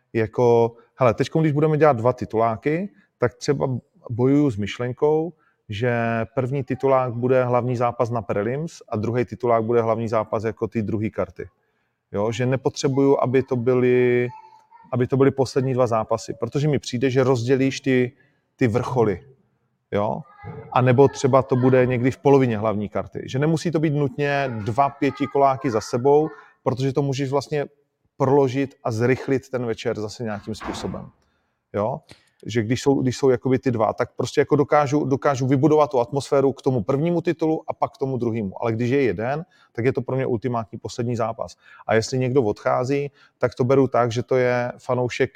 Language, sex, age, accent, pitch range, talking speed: Czech, male, 30-49, native, 120-140 Hz, 170 wpm